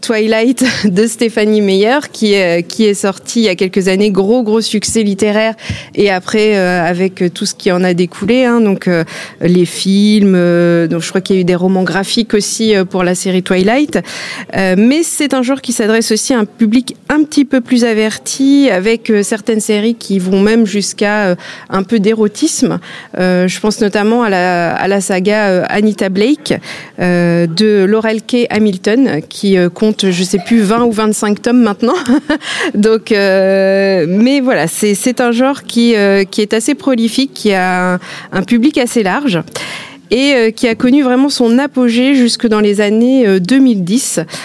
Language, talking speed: French, 175 wpm